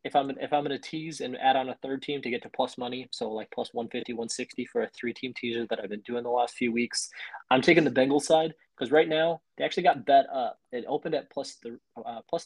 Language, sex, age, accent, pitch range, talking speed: English, male, 20-39, American, 115-140 Hz, 265 wpm